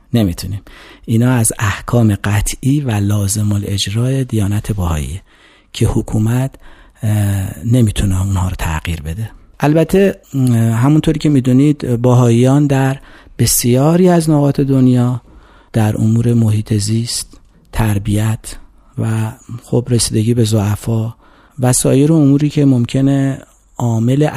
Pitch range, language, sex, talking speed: 105-135 Hz, Persian, male, 105 wpm